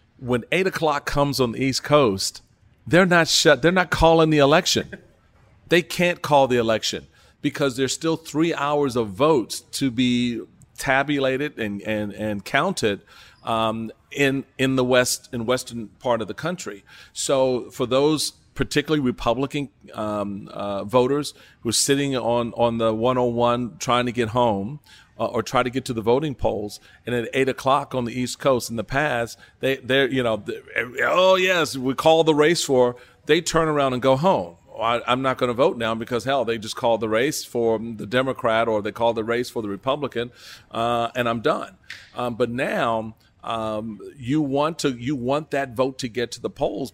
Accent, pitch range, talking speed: American, 115-140 Hz, 190 wpm